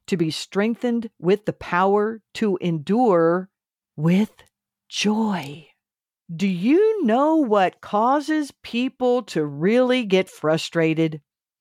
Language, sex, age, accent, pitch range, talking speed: English, female, 50-69, American, 180-260 Hz, 105 wpm